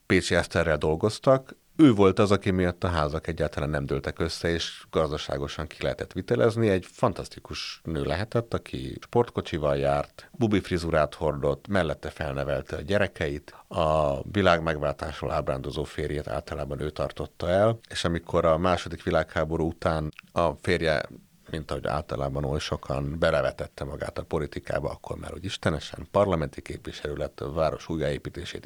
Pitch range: 75-95 Hz